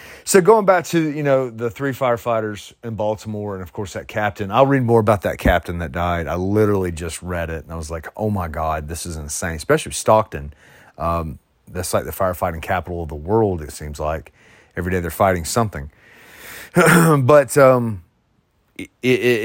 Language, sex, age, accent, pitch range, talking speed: English, male, 30-49, American, 90-125 Hz, 190 wpm